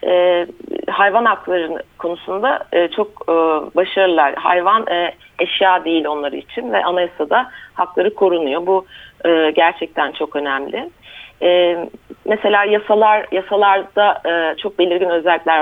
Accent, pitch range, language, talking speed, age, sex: native, 160-190 Hz, Turkish, 120 wpm, 40-59, female